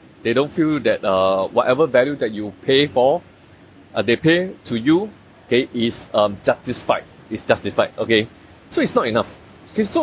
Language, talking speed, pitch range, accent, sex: English, 175 wpm, 110-185 Hz, Malaysian, male